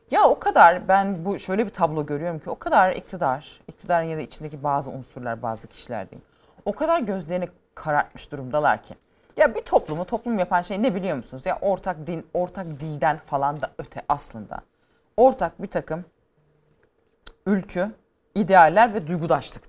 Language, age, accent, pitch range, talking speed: Turkish, 30-49, native, 150-200 Hz, 160 wpm